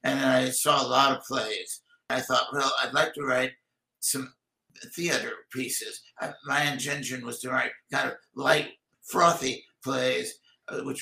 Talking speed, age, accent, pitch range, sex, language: 165 wpm, 60-79, American, 130-155 Hz, male, English